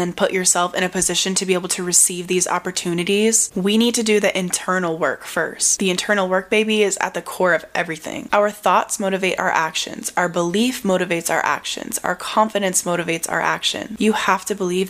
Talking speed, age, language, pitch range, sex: 200 wpm, 10-29, English, 175-200 Hz, female